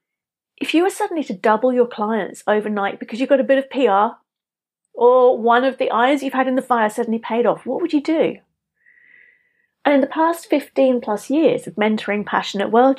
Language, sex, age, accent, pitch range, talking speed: English, female, 40-59, British, 215-285 Hz, 205 wpm